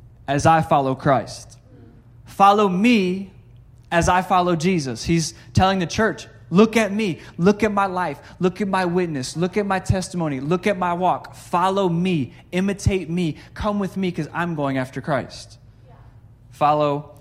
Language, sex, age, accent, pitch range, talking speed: English, male, 20-39, American, 135-185 Hz, 160 wpm